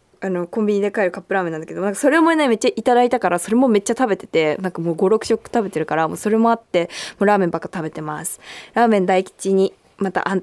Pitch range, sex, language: 195-275 Hz, female, Japanese